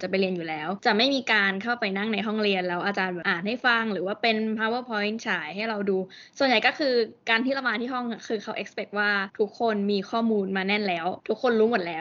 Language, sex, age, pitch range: Thai, female, 20-39, 195-230 Hz